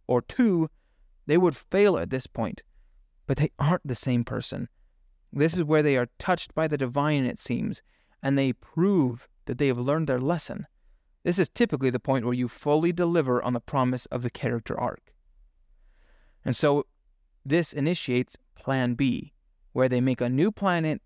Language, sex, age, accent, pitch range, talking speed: English, male, 30-49, American, 120-155 Hz, 180 wpm